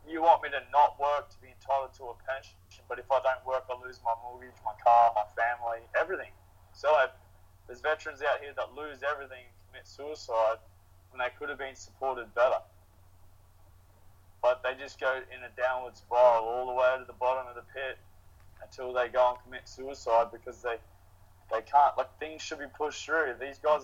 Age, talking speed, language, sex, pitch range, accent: 20-39, 200 wpm, English, male, 95-135 Hz, Australian